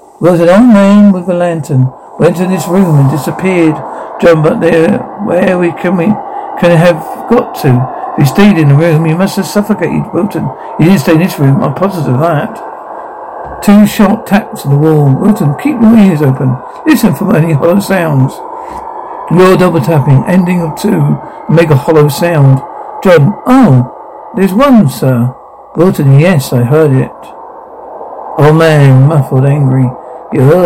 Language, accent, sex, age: English, British, male, 60-79